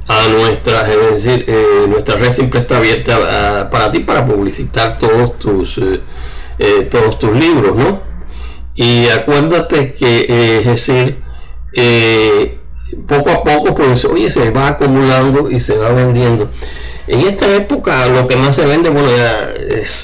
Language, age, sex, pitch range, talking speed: Spanish, 60-79, male, 110-140 Hz, 160 wpm